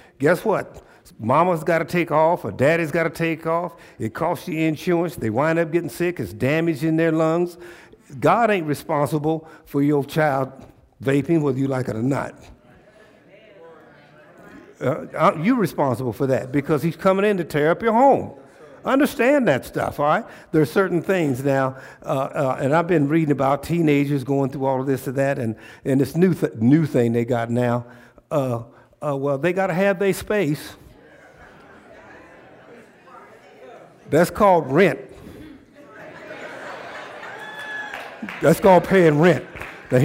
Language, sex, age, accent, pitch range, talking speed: English, male, 60-79, American, 140-180 Hz, 155 wpm